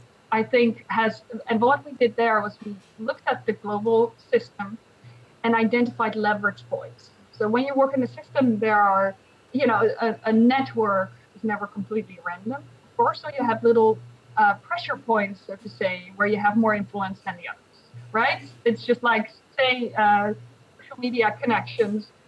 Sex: female